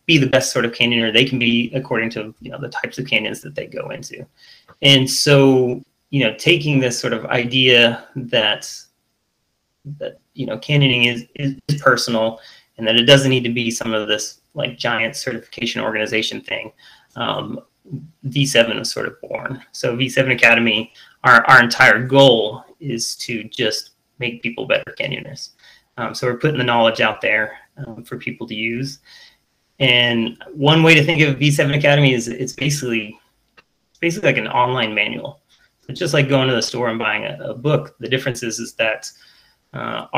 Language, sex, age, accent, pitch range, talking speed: English, male, 30-49, American, 115-140 Hz, 180 wpm